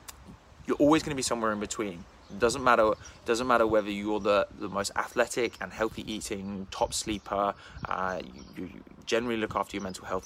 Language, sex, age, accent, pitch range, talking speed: English, male, 20-39, British, 95-115 Hz, 185 wpm